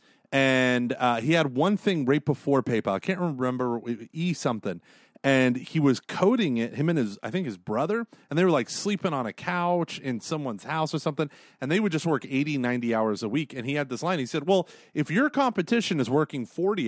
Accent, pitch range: American, 125-175 Hz